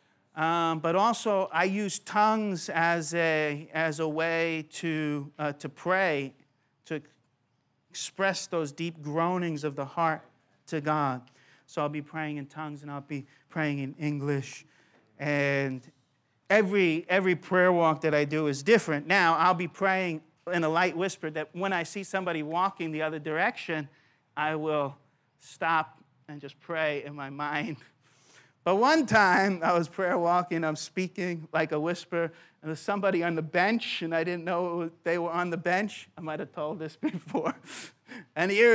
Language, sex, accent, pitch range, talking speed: English, male, American, 150-190 Hz, 165 wpm